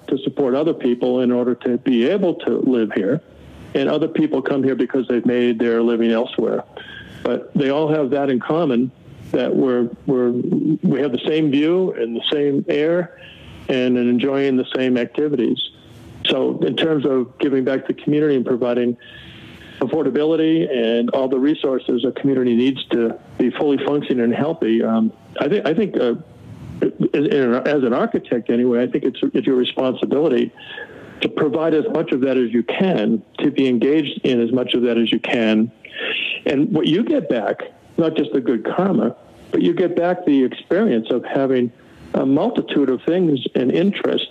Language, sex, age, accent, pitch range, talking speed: English, male, 50-69, American, 120-145 Hz, 180 wpm